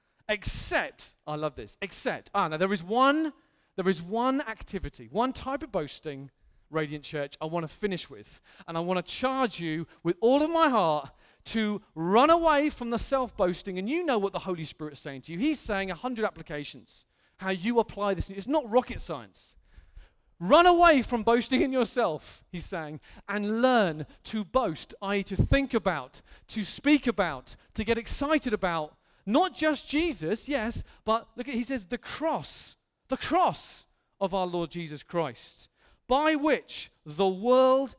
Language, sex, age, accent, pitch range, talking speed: English, male, 40-59, British, 170-260 Hz, 175 wpm